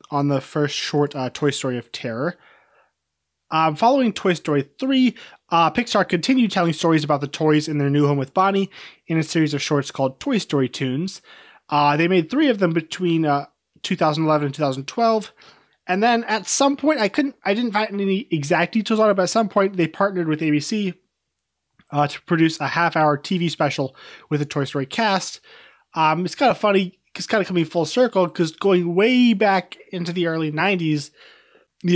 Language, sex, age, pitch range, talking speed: English, male, 20-39, 145-190 Hz, 190 wpm